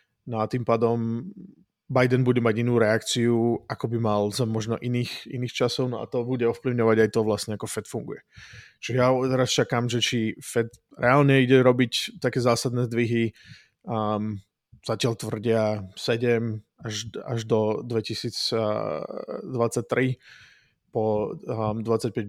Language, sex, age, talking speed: Czech, male, 20-39, 135 wpm